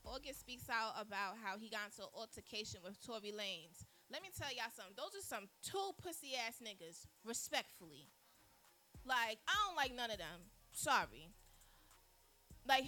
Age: 20-39